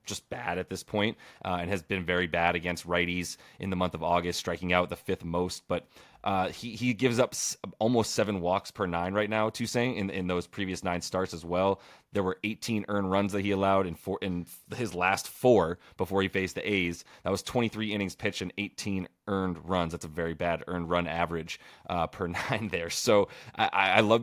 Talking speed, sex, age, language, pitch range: 225 wpm, male, 30-49, English, 90-105 Hz